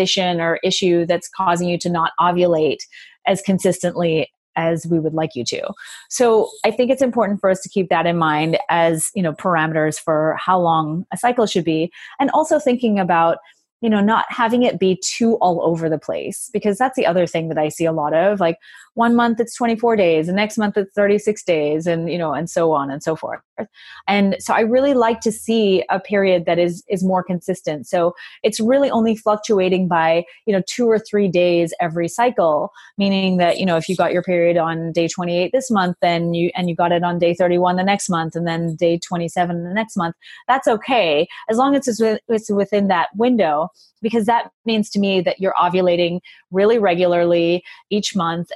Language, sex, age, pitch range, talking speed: English, female, 30-49, 170-215 Hz, 210 wpm